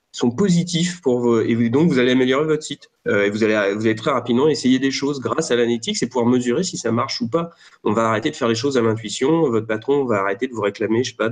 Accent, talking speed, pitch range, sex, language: French, 275 wpm, 110-145 Hz, male, French